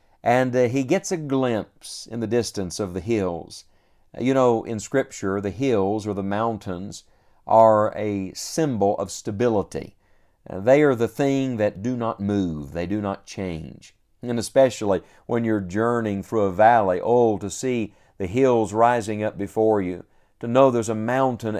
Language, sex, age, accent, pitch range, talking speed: English, male, 50-69, American, 100-135 Hz, 170 wpm